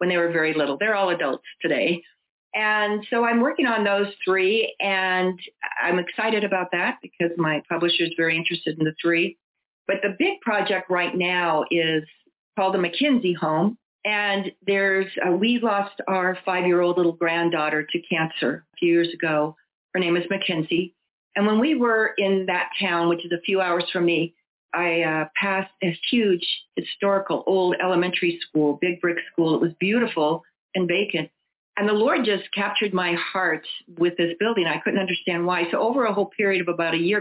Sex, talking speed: female, 185 wpm